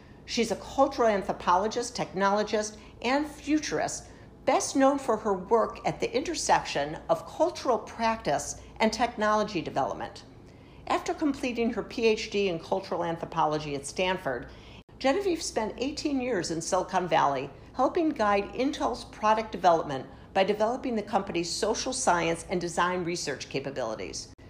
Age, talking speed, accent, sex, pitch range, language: 50-69, 125 wpm, American, female, 170-230 Hz, English